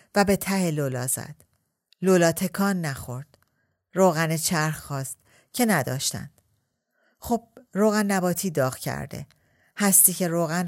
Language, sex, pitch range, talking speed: Persian, female, 140-185 Hz, 120 wpm